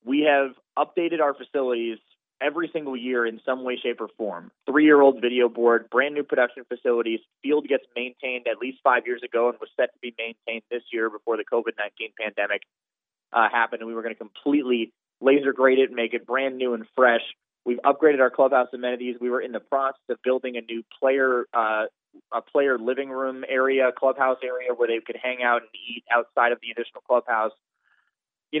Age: 20-39